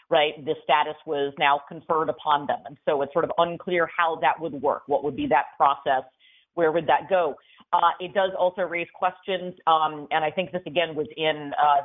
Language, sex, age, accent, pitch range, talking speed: English, female, 40-59, American, 150-180 Hz, 215 wpm